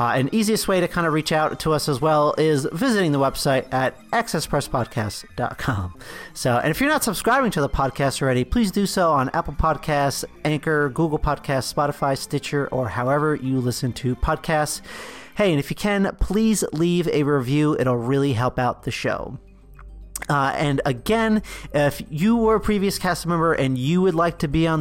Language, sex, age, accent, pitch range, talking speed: English, male, 40-59, American, 135-180 Hz, 190 wpm